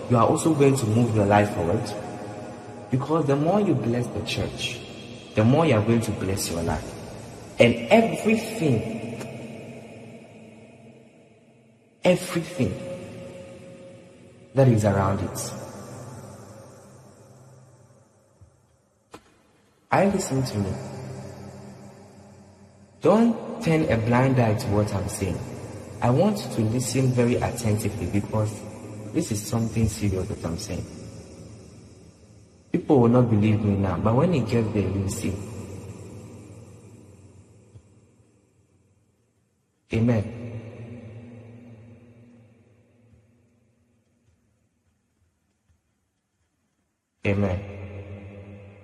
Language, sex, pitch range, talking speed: English, male, 100-120 Hz, 90 wpm